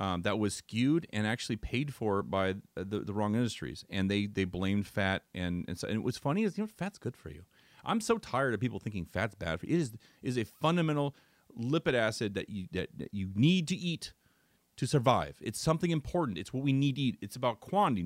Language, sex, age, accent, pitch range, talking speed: English, male, 30-49, American, 105-155 Hz, 235 wpm